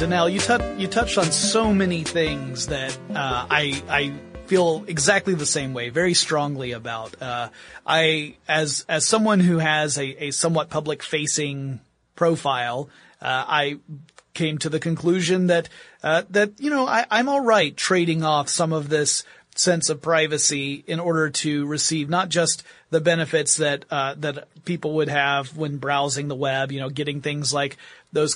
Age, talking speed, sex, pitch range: 30-49, 170 wpm, male, 145-170 Hz